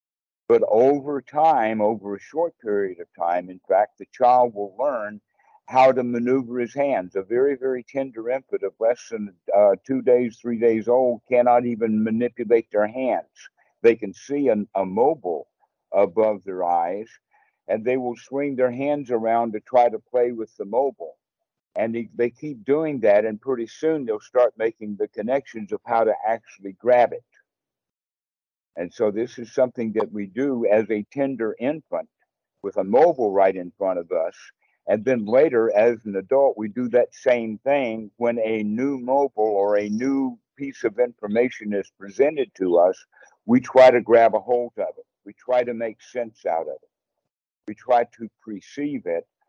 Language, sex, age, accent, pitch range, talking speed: English, male, 60-79, American, 110-135 Hz, 180 wpm